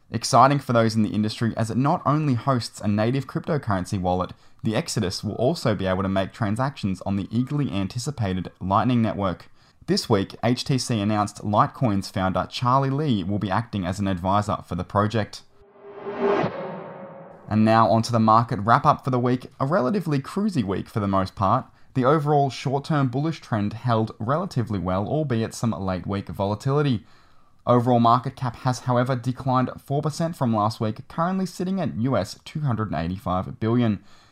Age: 20-39